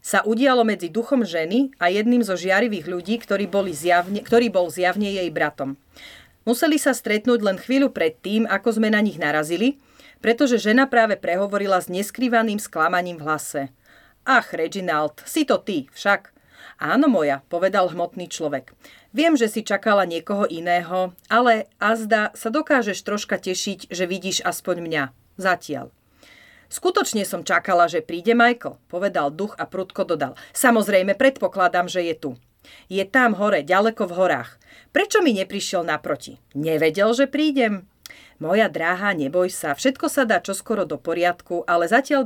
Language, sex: Slovak, female